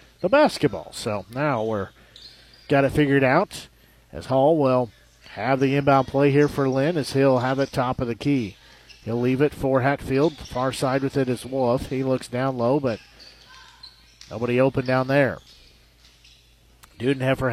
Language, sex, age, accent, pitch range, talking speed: English, male, 50-69, American, 105-145 Hz, 170 wpm